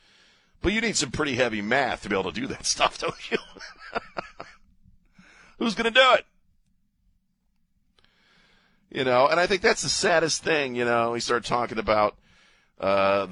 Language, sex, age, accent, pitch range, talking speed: English, male, 40-59, American, 100-135 Hz, 165 wpm